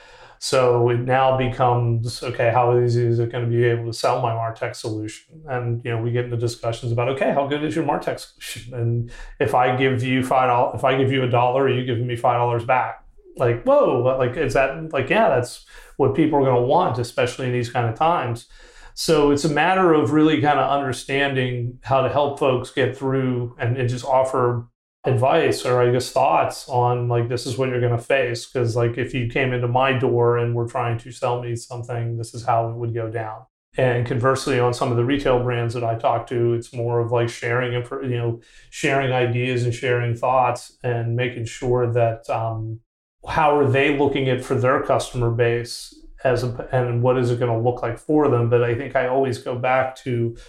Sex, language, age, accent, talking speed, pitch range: male, English, 30-49, American, 220 wpm, 120-130 Hz